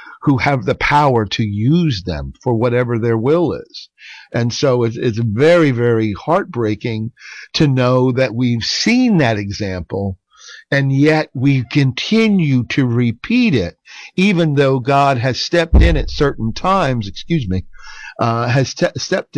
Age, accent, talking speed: 50-69, American, 150 wpm